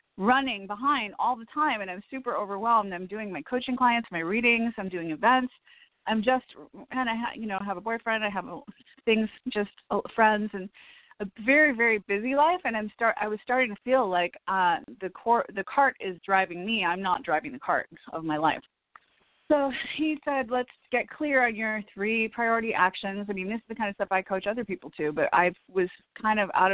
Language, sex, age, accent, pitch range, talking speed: English, female, 30-49, American, 185-245 Hz, 215 wpm